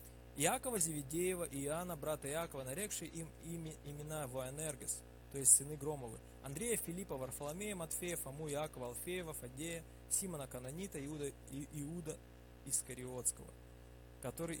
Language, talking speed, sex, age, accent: Russian, 120 wpm, male, 20-39, native